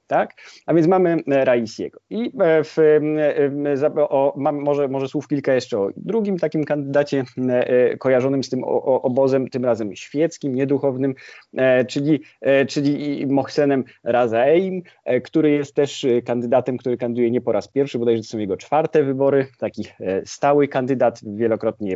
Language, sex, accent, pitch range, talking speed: Polish, male, native, 110-140 Hz, 155 wpm